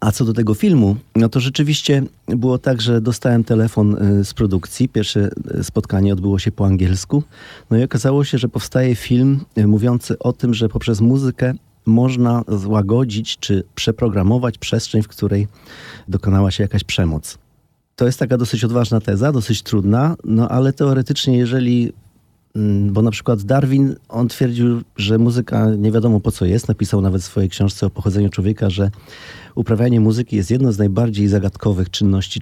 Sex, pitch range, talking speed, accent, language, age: male, 100-120 Hz, 160 wpm, native, Polish, 30-49